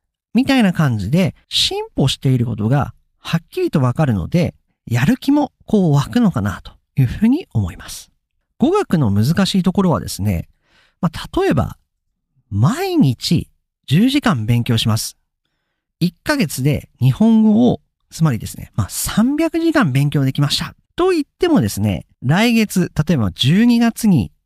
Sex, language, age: male, Japanese, 40-59